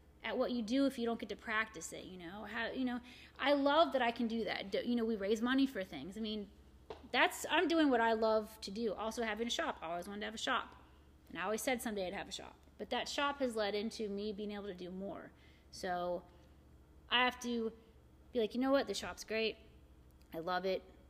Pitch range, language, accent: 180-245 Hz, English, American